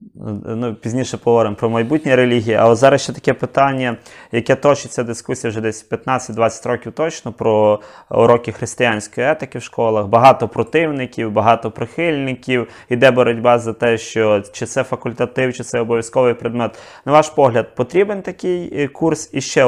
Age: 20-39